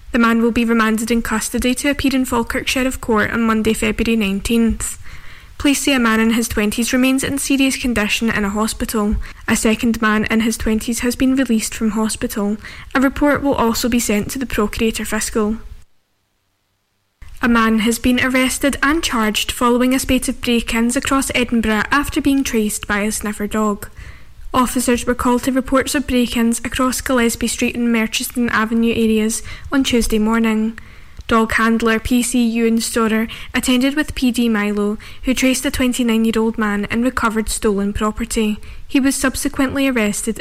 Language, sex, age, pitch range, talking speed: English, female, 10-29, 220-255 Hz, 165 wpm